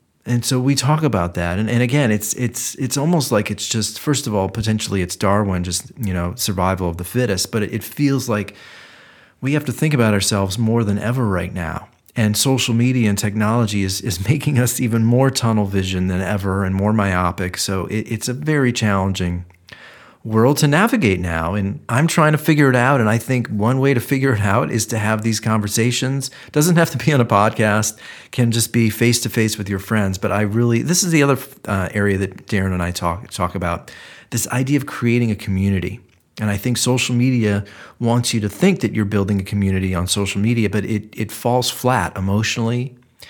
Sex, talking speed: male, 215 wpm